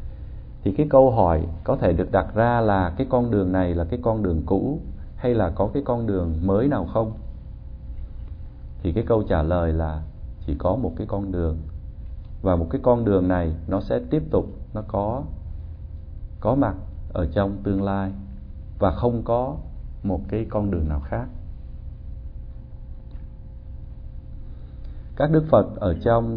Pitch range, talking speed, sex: 80-105 Hz, 165 wpm, male